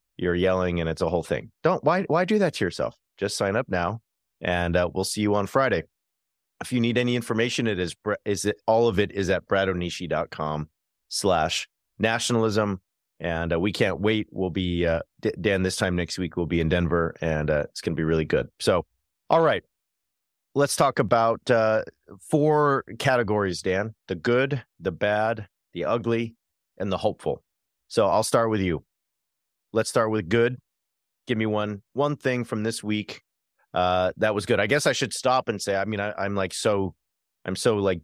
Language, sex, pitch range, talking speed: English, male, 90-115 Hz, 190 wpm